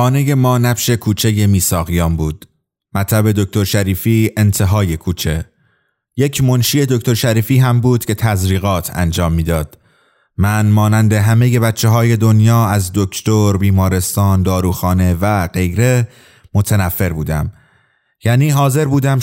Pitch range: 100-125 Hz